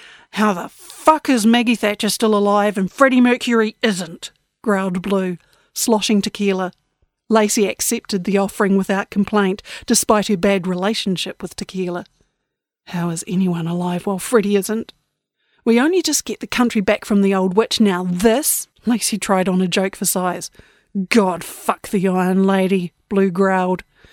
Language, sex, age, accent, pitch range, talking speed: English, female, 40-59, Australian, 190-235 Hz, 155 wpm